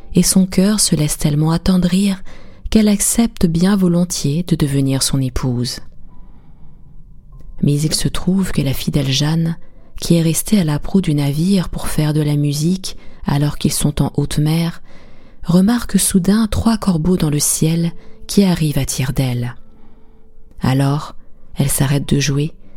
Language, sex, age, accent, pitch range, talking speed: French, female, 20-39, French, 140-185 Hz, 155 wpm